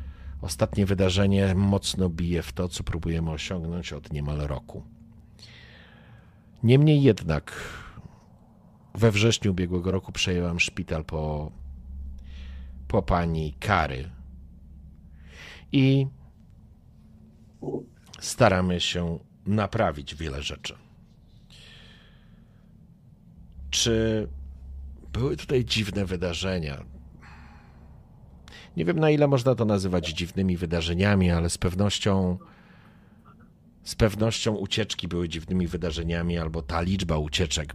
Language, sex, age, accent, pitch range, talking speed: Polish, male, 50-69, native, 75-100 Hz, 90 wpm